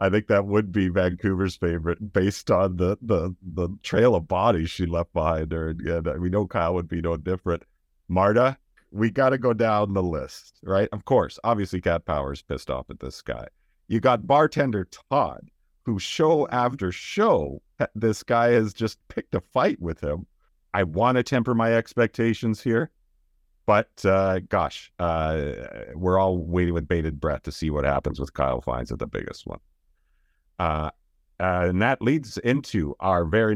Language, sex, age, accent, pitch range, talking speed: English, male, 50-69, American, 80-110 Hz, 175 wpm